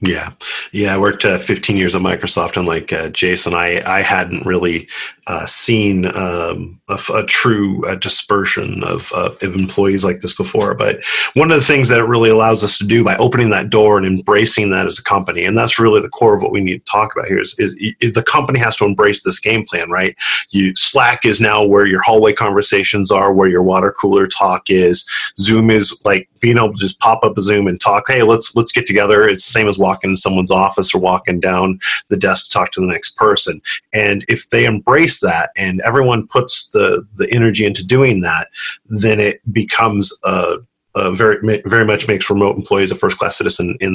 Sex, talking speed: male, 220 wpm